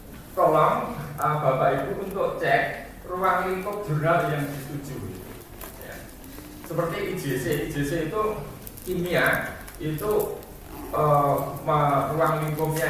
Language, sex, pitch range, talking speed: Indonesian, male, 110-155 Hz, 100 wpm